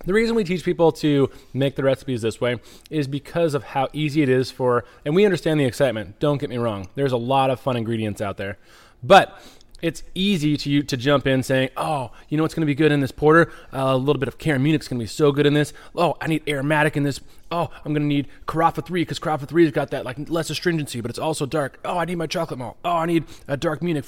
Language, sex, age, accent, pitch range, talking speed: English, male, 20-39, American, 120-150 Hz, 260 wpm